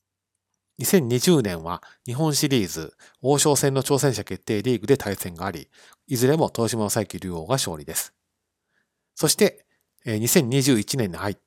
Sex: male